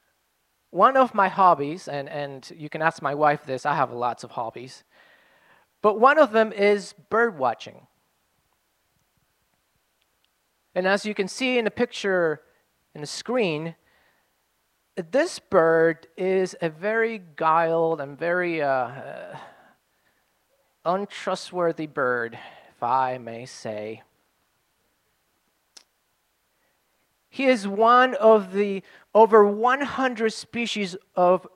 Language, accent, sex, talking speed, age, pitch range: English, American, male, 110 wpm, 30-49, 150-210 Hz